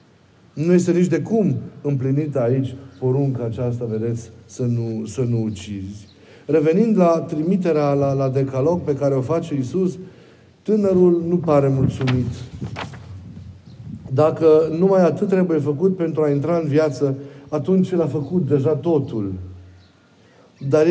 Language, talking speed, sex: Romanian, 135 wpm, male